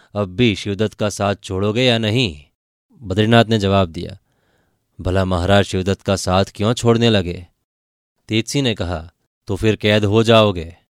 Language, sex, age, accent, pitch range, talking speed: Hindi, male, 20-39, native, 90-110 Hz, 155 wpm